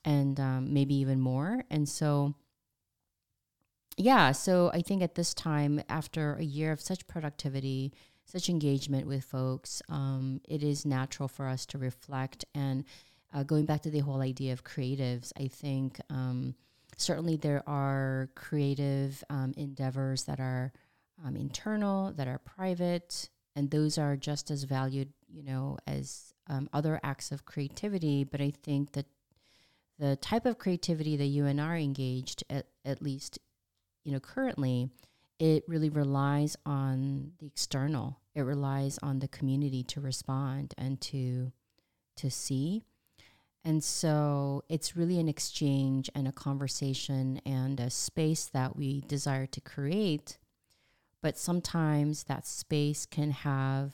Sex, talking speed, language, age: female, 145 wpm, English, 30-49